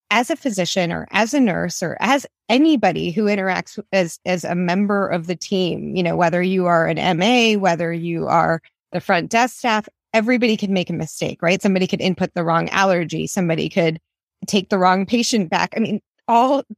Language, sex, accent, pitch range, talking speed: English, female, American, 180-230 Hz, 195 wpm